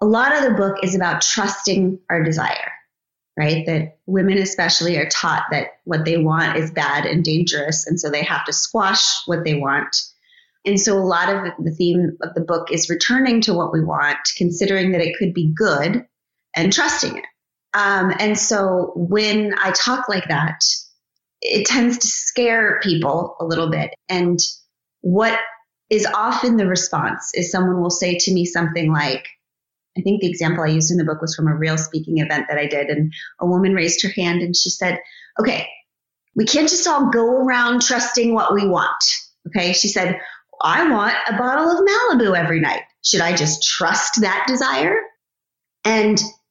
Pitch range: 170-215 Hz